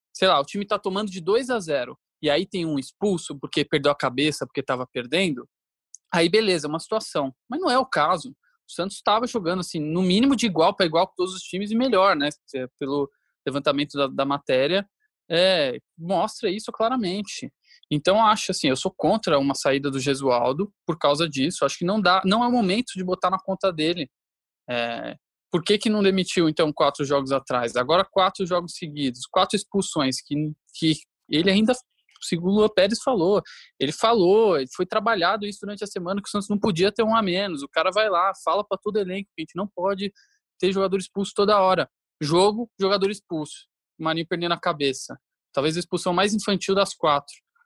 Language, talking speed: Portuguese, 200 wpm